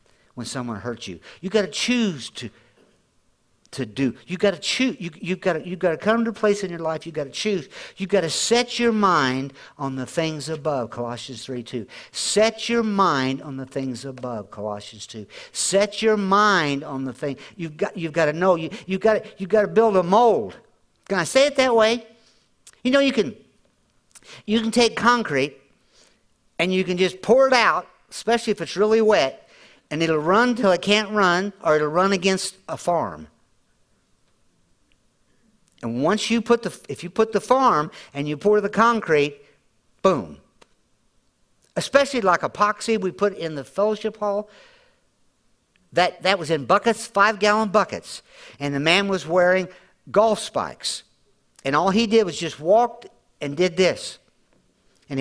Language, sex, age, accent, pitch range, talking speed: English, male, 50-69, American, 150-220 Hz, 180 wpm